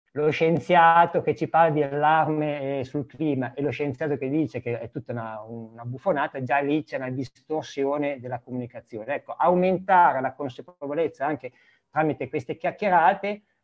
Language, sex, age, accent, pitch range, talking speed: Italian, male, 50-69, native, 125-155 Hz, 155 wpm